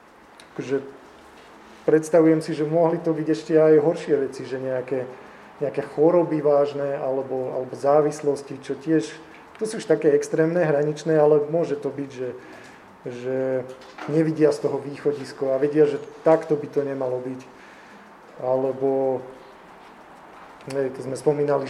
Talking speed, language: 140 wpm, Slovak